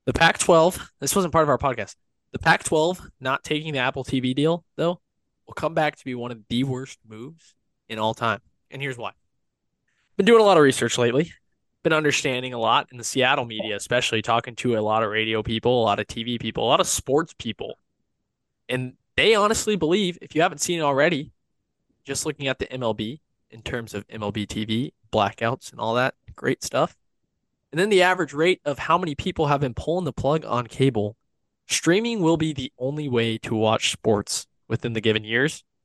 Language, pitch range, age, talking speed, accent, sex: English, 115-150 Hz, 20-39, 205 wpm, American, male